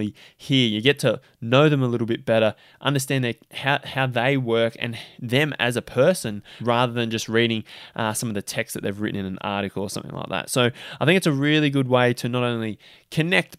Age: 20-39